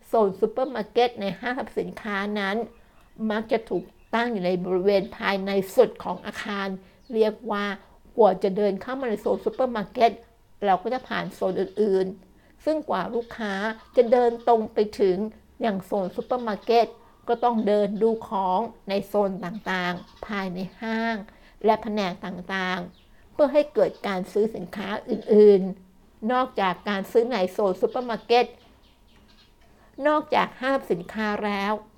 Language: Thai